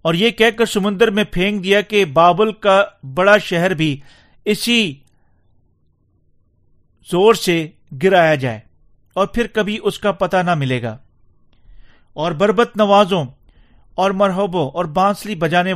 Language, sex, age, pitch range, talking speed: Urdu, male, 50-69, 125-200 Hz, 135 wpm